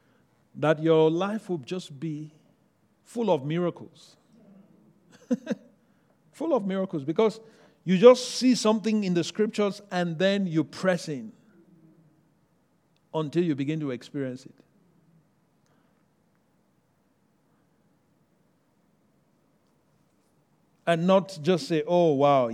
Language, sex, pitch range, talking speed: English, male, 135-185 Hz, 100 wpm